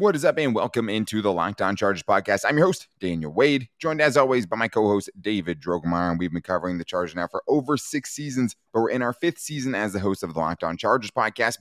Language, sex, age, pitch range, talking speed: English, male, 20-39, 90-110 Hz, 255 wpm